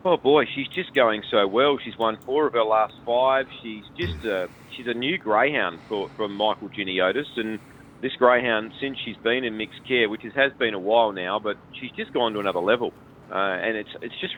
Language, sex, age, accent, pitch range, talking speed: English, male, 40-59, Australian, 110-130 Hz, 215 wpm